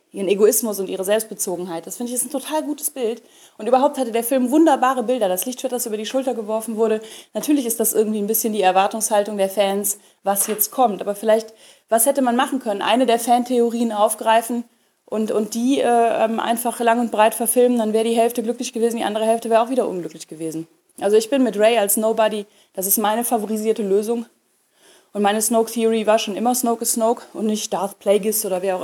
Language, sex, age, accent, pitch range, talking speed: German, female, 30-49, German, 215-255 Hz, 215 wpm